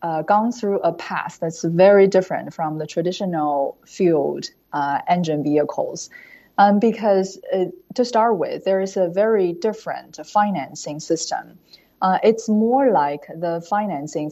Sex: female